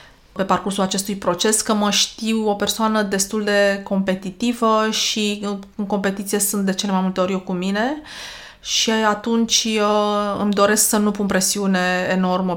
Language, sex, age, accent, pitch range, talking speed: Romanian, female, 20-39, native, 185-215 Hz, 160 wpm